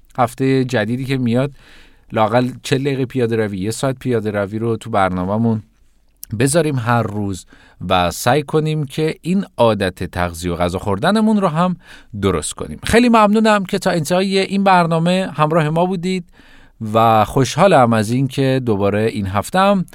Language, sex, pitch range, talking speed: Persian, male, 110-165 Hz, 155 wpm